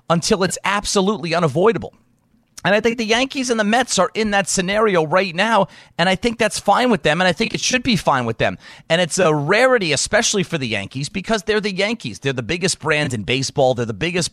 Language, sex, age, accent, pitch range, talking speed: English, male, 30-49, American, 135-190 Hz, 230 wpm